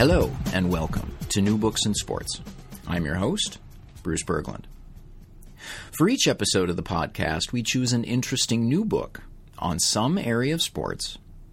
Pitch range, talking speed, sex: 100-155 Hz, 155 wpm, male